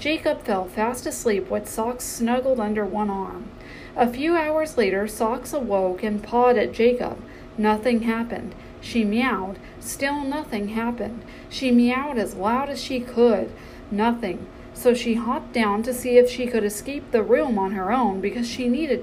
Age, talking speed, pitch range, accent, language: 40-59, 165 wpm, 205-255 Hz, American, English